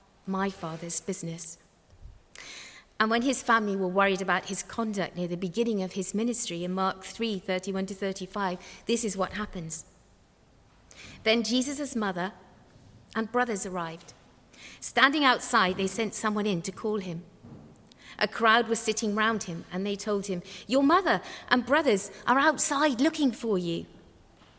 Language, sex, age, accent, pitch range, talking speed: English, female, 50-69, British, 185-235 Hz, 150 wpm